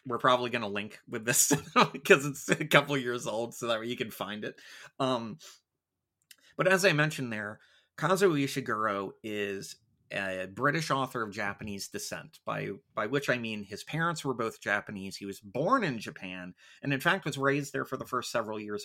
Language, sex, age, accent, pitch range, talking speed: English, male, 30-49, American, 105-140 Hz, 195 wpm